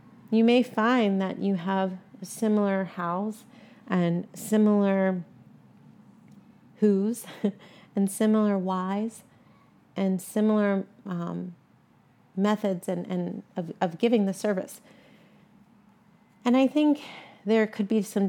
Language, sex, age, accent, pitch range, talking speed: English, female, 30-49, American, 185-210 Hz, 105 wpm